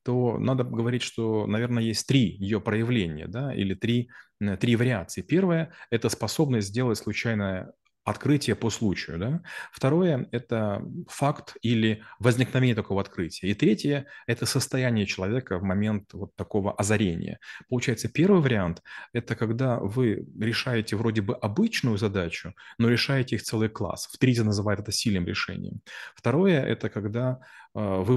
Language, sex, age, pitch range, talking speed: Russian, male, 30-49, 105-125 Hz, 145 wpm